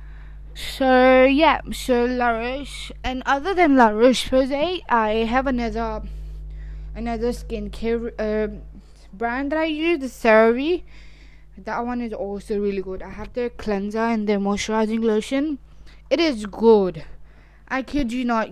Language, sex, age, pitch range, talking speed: English, female, 20-39, 215-265 Hz, 135 wpm